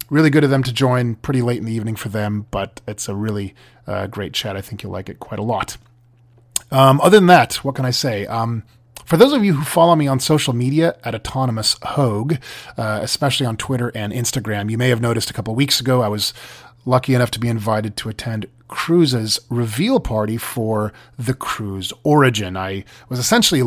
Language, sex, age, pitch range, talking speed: English, male, 30-49, 110-140 Hz, 210 wpm